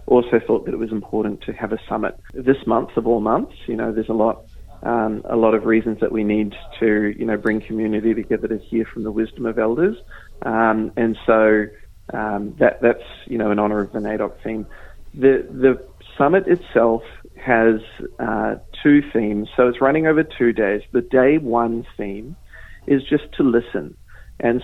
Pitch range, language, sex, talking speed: 110-125 Hz, English, male, 190 wpm